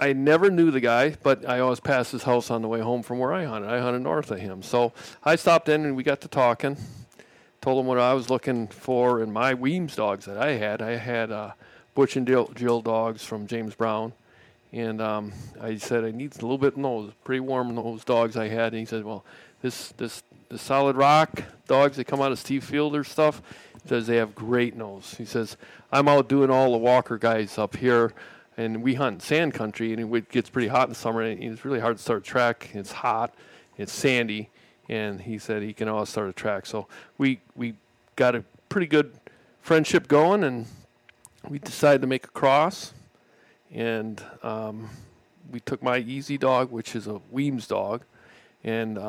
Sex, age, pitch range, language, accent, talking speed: male, 40-59, 110-135 Hz, English, American, 210 wpm